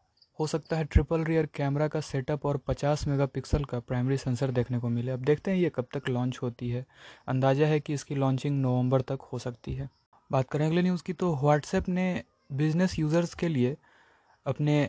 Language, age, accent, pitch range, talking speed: Hindi, 20-39, native, 130-165 Hz, 200 wpm